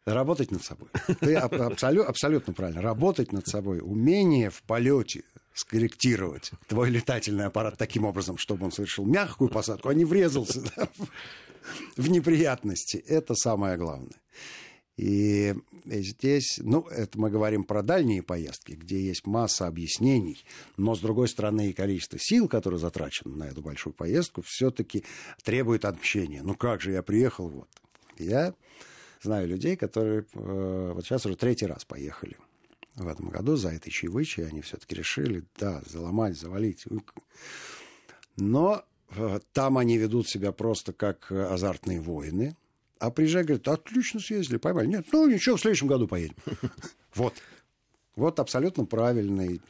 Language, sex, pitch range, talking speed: Russian, male, 95-125 Hz, 145 wpm